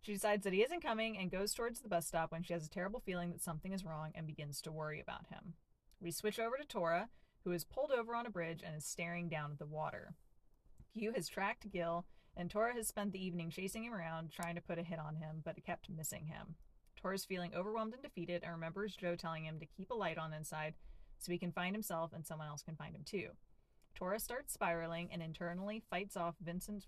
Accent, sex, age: American, female, 30-49